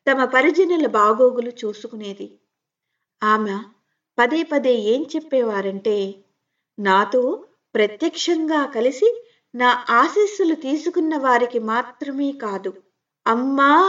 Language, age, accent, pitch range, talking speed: Telugu, 50-69, native, 215-285 Hz, 80 wpm